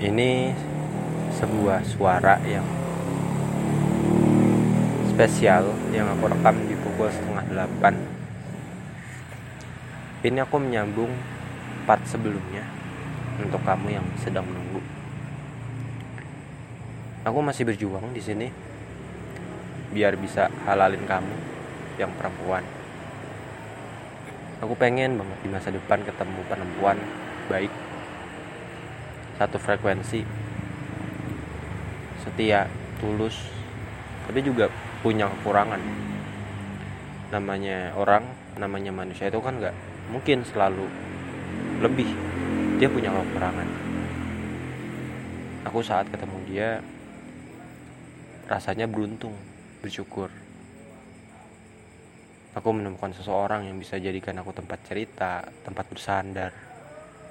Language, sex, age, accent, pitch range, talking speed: Indonesian, male, 20-39, native, 100-130 Hz, 85 wpm